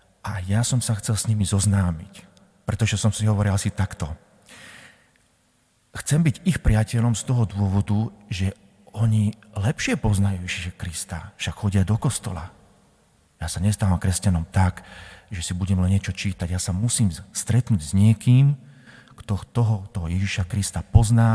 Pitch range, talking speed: 90-105 Hz, 150 wpm